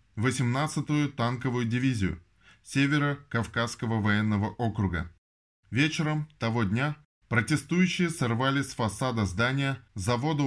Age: 20-39